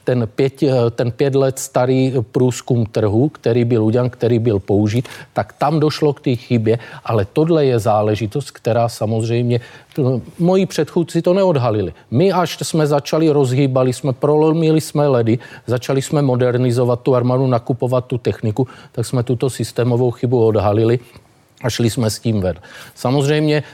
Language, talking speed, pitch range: Czech, 150 wpm, 115-135 Hz